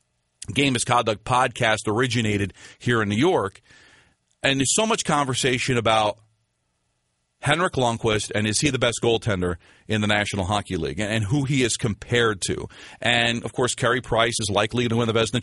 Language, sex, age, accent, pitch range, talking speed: English, male, 40-59, American, 115-150 Hz, 175 wpm